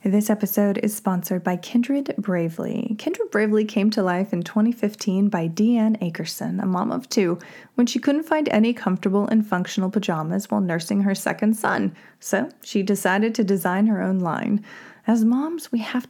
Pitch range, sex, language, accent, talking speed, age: 180-220 Hz, female, English, American, 175 wpm, 20-39